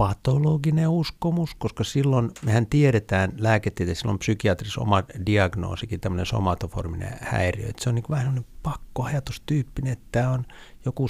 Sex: male